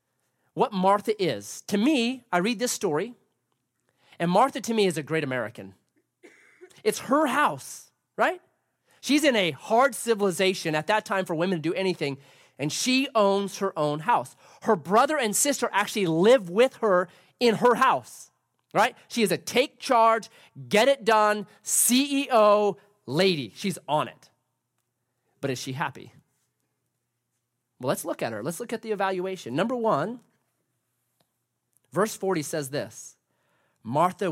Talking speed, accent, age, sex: 150 wpm, American, 30-49, male